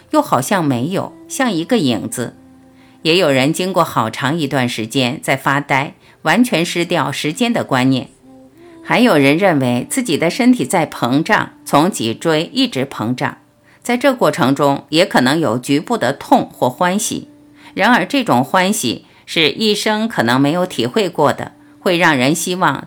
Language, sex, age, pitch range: Chinese, female, 50-69, 130-215 Hz